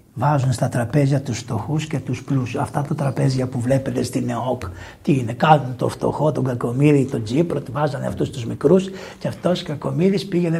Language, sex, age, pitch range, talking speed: Greek, male, 60-79, 135-195 Hz, 190 wpm